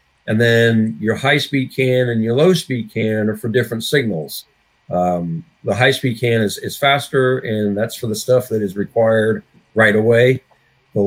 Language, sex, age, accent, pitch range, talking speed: English, male, 50-69, American, 110-130 Hz, 170 wpm